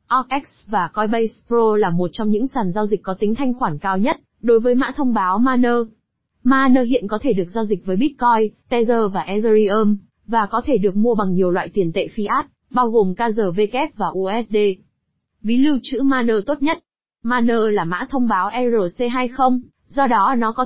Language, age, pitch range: Vietnamese, 20-39, 205-245 Hz